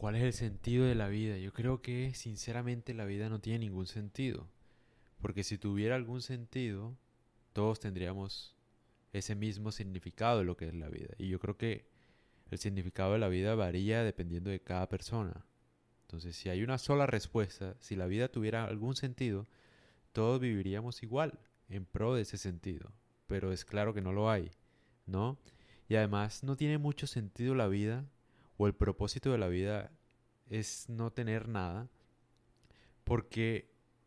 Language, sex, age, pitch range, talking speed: Spanish, male, 20-39, 100-125 Hz, 165 wpm